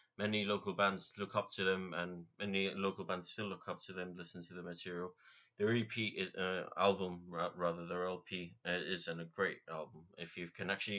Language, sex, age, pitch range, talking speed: English, male, 30-49, 90-100 Hz, 195 wpm